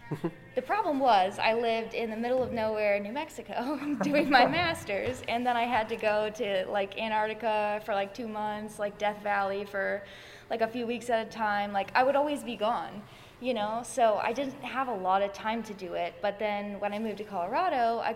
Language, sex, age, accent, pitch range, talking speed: English, female, 10-29, American, 205-245 Hz, 220 wpm